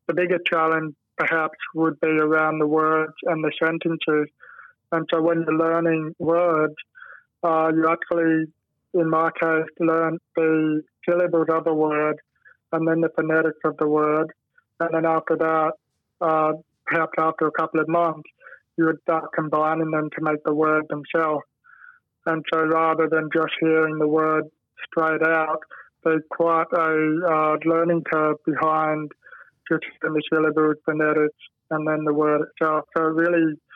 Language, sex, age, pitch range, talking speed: English, male, 20-39, 155-165 Hz, 155 wpm